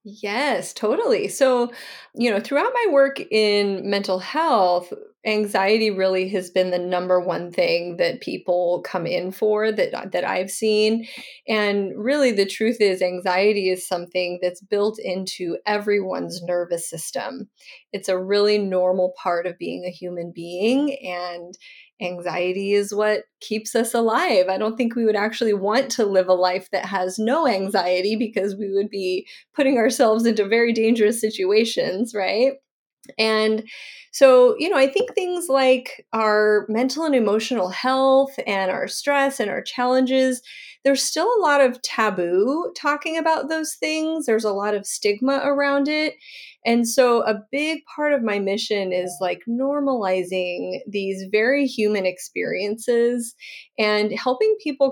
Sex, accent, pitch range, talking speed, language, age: female, American, 190-265 Hz, 150 wpm, English, 30-49